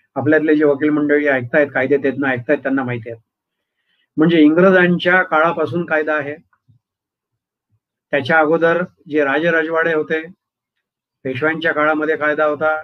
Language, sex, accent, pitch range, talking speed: Marathi, male, native, 135-160 Hz, 80 wpm